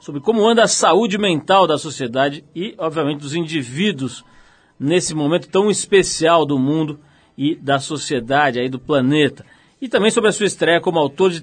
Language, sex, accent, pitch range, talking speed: Portuguese, male, Brazilian, 140-180 Hz, 175 wpm